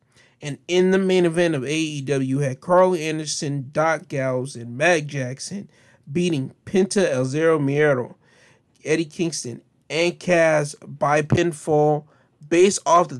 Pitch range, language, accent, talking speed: 135-160 Hz, English, American, 130 wpm